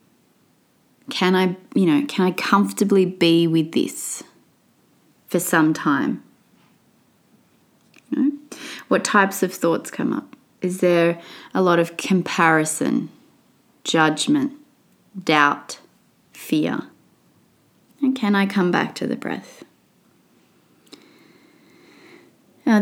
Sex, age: female, 20-39